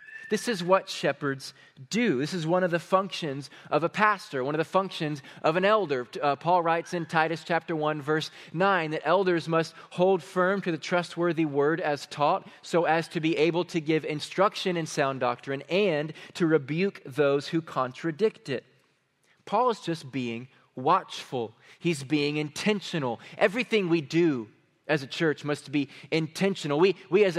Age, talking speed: 20-39, 175 wpm